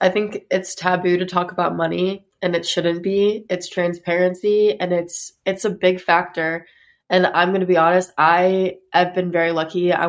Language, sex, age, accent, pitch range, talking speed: English, female, 20-39, American, 175-195 Hz, 190 wpm